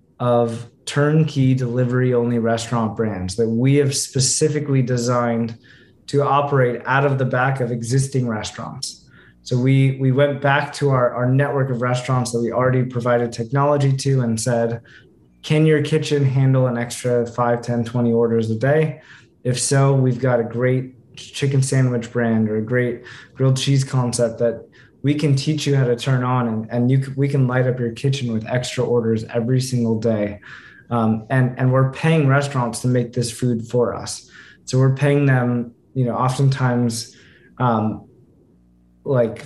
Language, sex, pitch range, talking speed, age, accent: English, male, 120-135 Hz, 170 wpm, 20-39, American